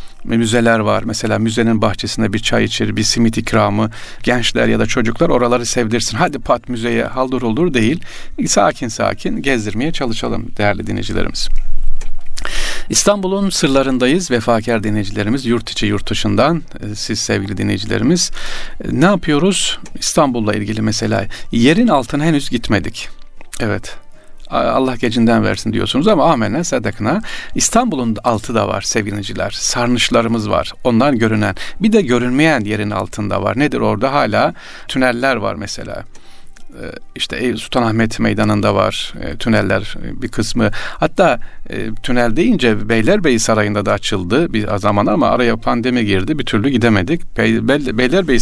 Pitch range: 105-125 Hz